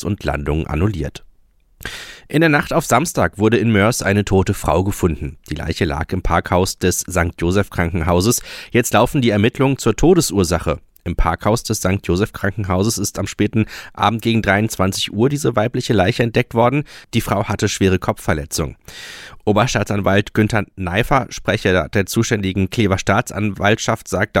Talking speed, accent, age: 150 wpm, German, 30-49